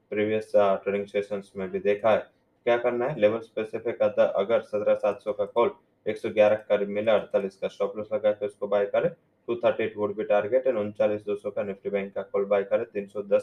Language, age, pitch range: English, 20-39, 100-130 Hz